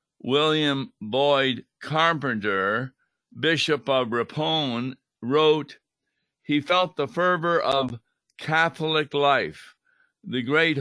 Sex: male